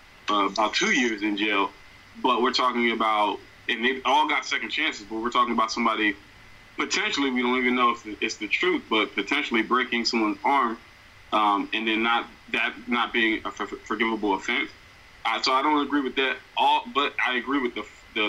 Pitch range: 105-130 Hz